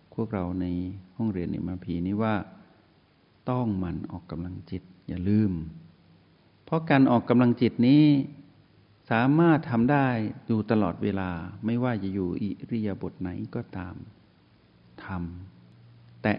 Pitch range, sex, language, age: 95-115 Hz, male, Thai, 60-79